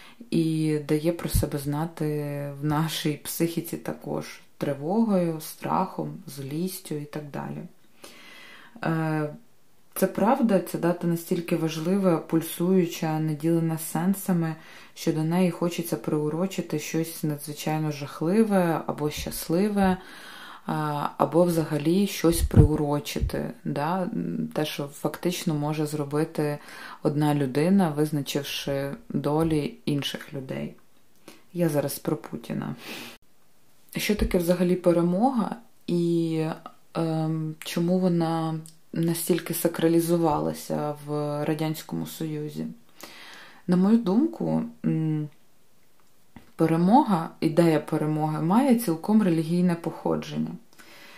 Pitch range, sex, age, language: 150-180 Hz, female, 20-39, Ukrainian